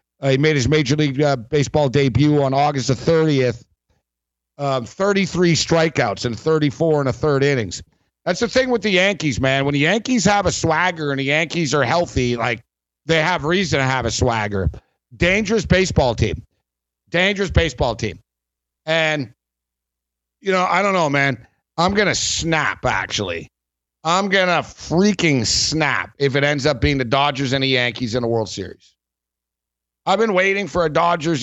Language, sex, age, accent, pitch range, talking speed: English, male, 50-69, American, 125-165 Hz, 175 wpm